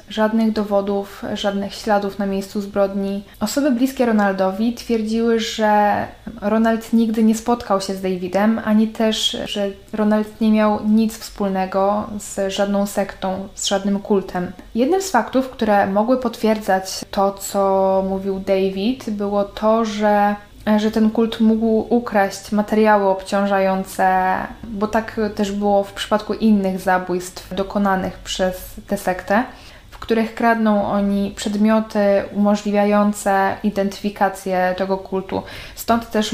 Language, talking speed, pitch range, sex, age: Polish, 125 wpm, 195-220 Hz, female, 10-29